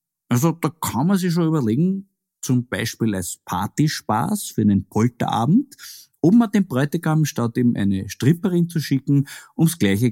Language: German